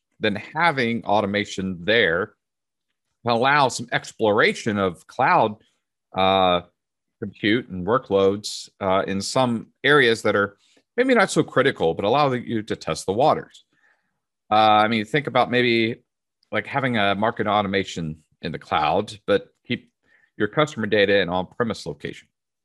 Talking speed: 140 wpm